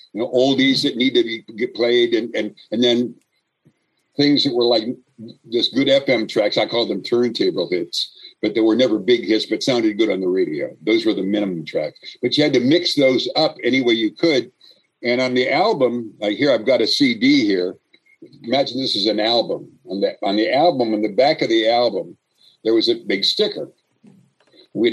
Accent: American